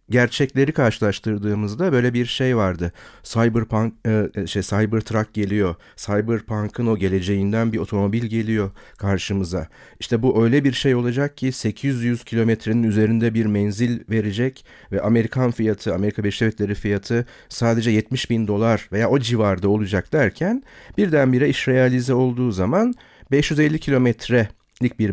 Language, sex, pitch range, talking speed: Turkish, male, 105-130 Hz, 125 wpm